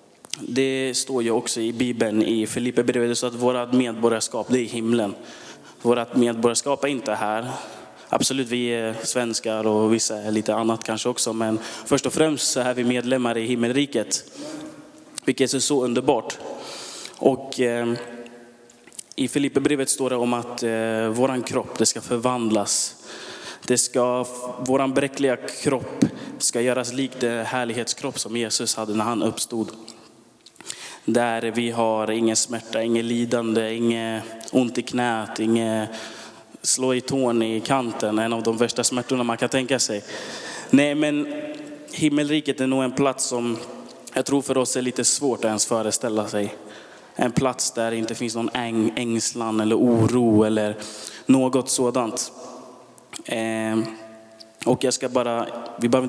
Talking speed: 150 wpm